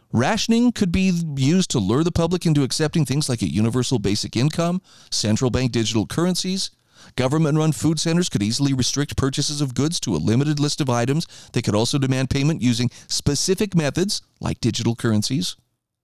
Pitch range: 115-165 Hz